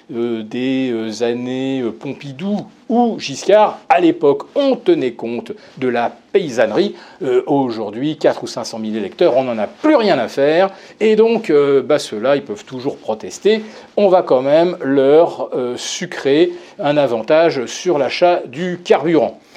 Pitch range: 145-235 Hz